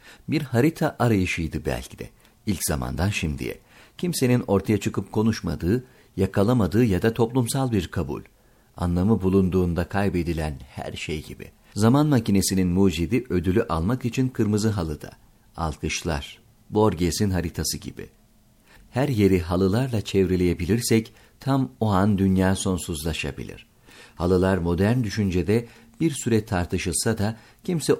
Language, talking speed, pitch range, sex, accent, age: Turkish, 115 wpm, 90-115 Hz, male, native, 50-69